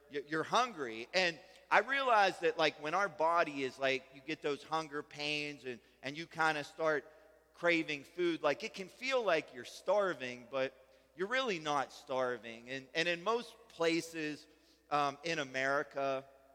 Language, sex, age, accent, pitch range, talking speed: English, male, 40-59, American, 130-165 Hz, 165 wpm